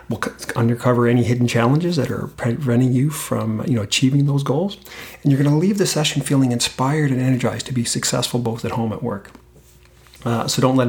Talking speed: 205 wpm